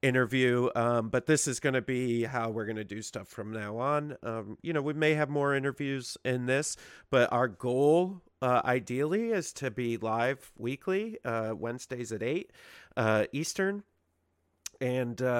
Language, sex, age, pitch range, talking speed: English, male, 40-59, 115-135 Hz, 170 wpm